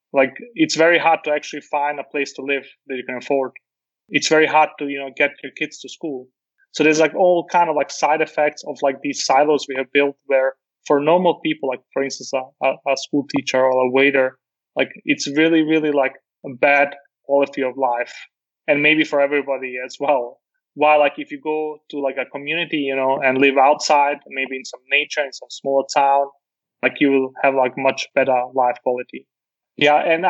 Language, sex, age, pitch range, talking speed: English, male, 20-39, 135-150 Hz, 210 wpm